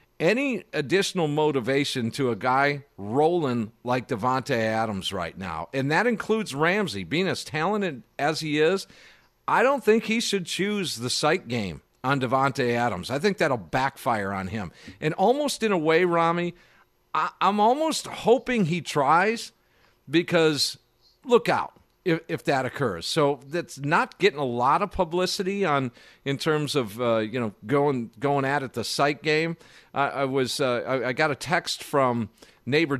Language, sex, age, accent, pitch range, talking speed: English, male, 50-69, American, 125-175 Hz, 165 wpm